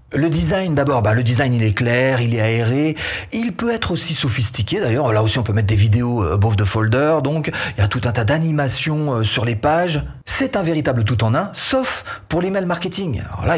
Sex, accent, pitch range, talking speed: male, French, 115-155 Hz, 225 wpm